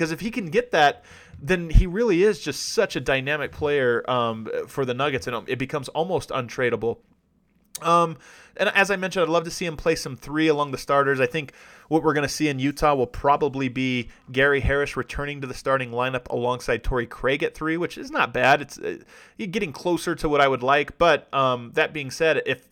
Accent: American